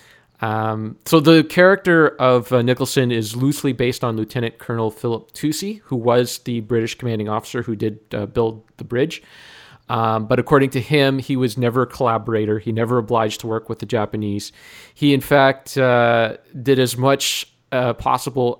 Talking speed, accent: 175 wpm, American